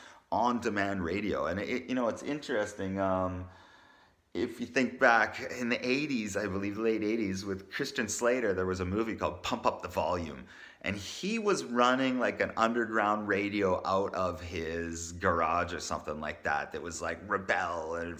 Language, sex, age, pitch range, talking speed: English, male, 30-49, 90-110 Hz, 170 wpm